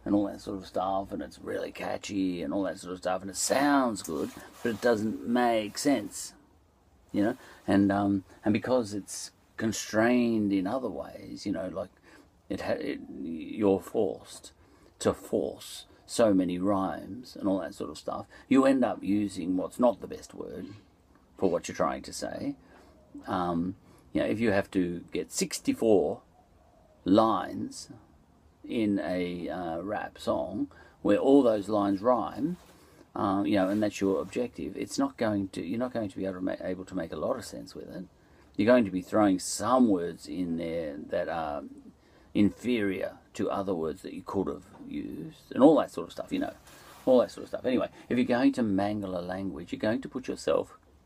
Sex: male